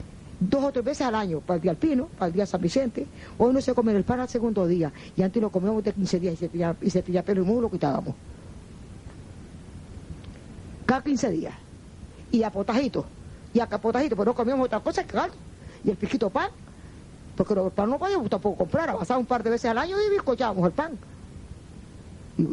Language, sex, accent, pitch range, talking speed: Spanish, female, American, 180-250 Hz, 205 wpm